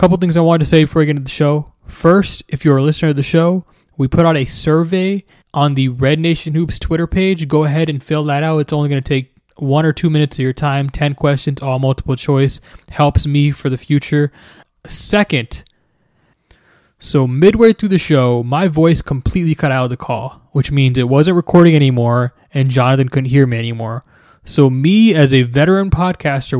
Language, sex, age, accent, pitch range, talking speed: English, male, 20-39, American, 130-165 Hz, 210 wpm